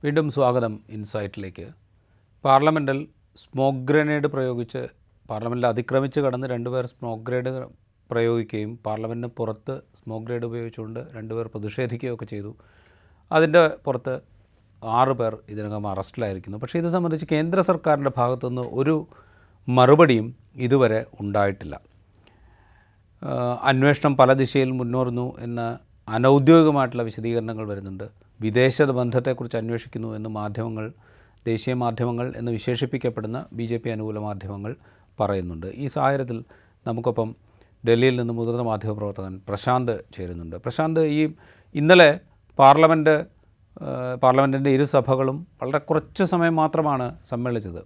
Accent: native